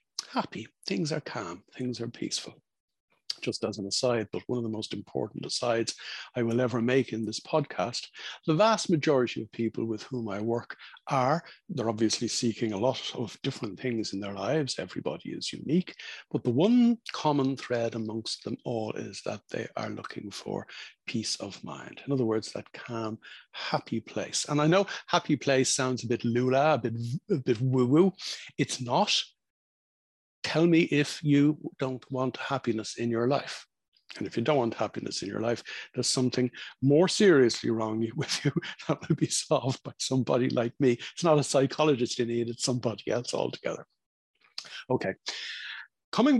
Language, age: English, 60-79